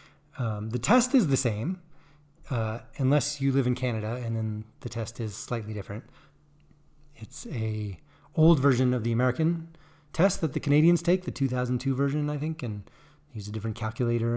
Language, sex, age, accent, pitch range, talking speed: English, male, 30-49, American, 120-150 Hz, 170 wpm